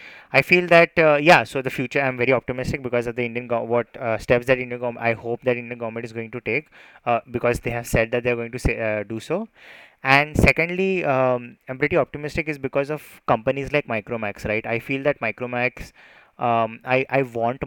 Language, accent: English, Indian